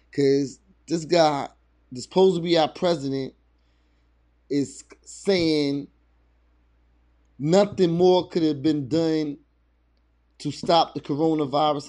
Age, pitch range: 30-49, 125-155 Hz